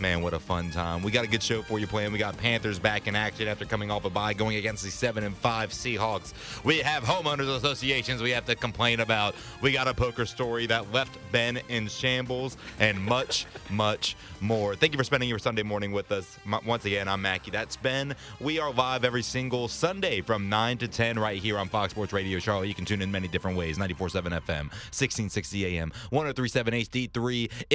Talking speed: 215 wpm